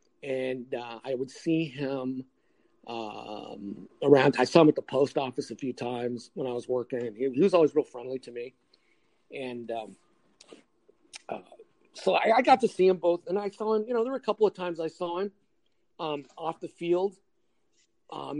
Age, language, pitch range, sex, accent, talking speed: 40-59, English, 140-175 Hz, male, American, 200 wpm